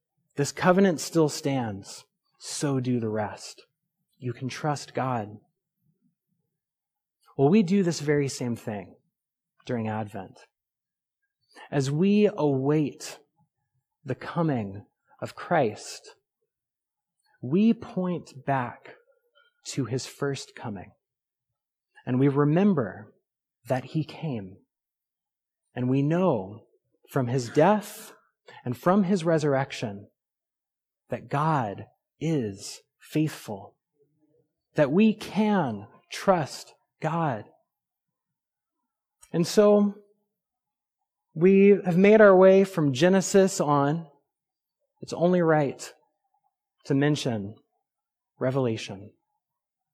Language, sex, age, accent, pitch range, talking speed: English, male, 30-49, American, 130-190 Hz, 90 wpm